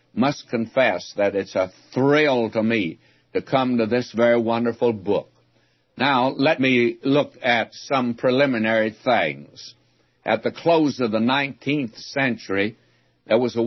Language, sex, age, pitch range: English, male, 60-79, 110-135 Hz